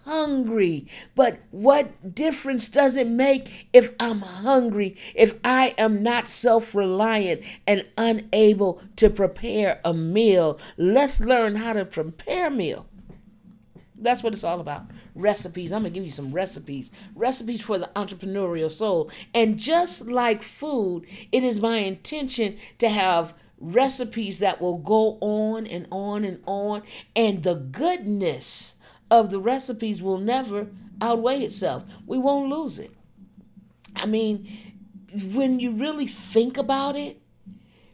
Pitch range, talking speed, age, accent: 190-230 Hz, 135 wpm, 50-69, American